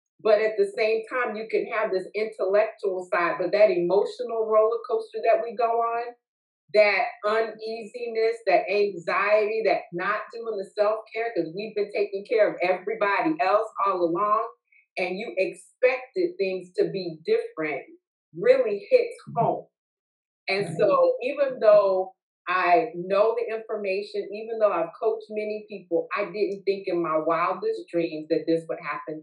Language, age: English, 40-59